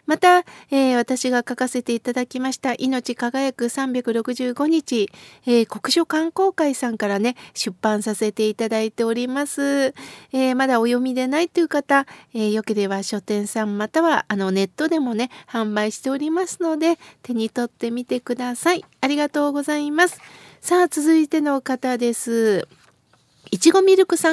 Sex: female